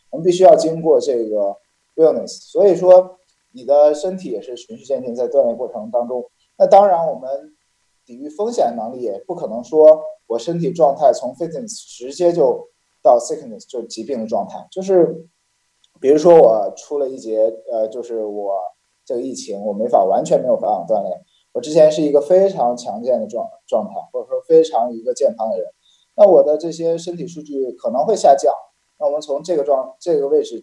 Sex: male